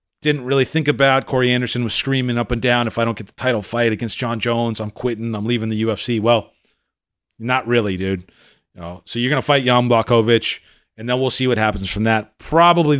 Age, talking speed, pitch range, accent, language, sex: 30-49, 220 wpm, 100-125 Hz, American, English, male